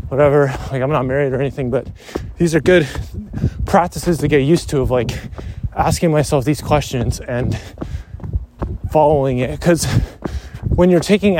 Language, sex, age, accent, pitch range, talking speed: English, male, 20-39, American, 110-150 Hz, 155 wpm